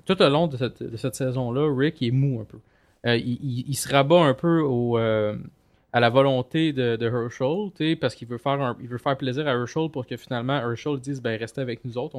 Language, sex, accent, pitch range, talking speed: French, male, Canadian, 115-155 Hz, 250 wpm